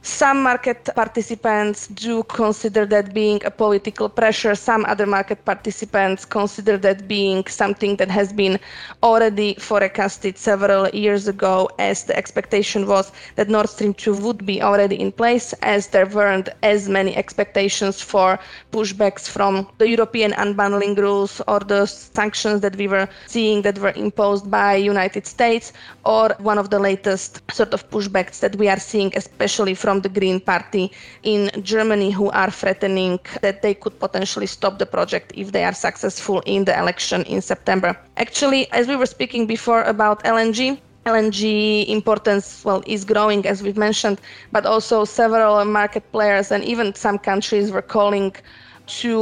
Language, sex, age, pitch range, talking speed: English, female, 20-39, 200-220 Hz, 160 wpm